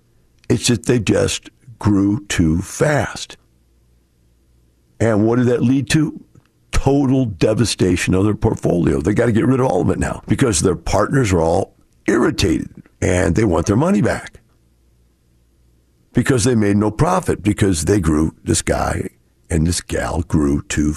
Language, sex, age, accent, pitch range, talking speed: English, male, 60-79, American, 75-115 Hz, 155 wpm